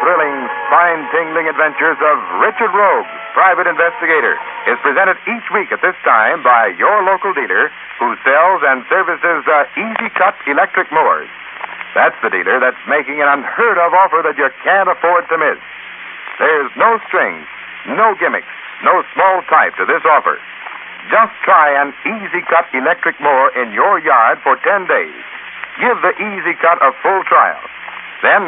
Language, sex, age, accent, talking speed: English, male, 60-79, American, 160 wpm